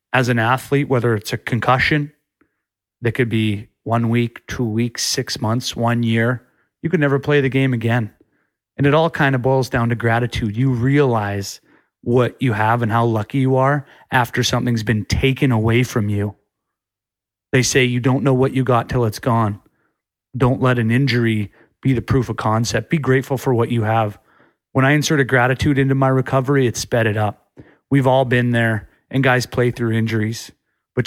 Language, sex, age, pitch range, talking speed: English, male, 30-49, 115-135 Hz, 190 wpm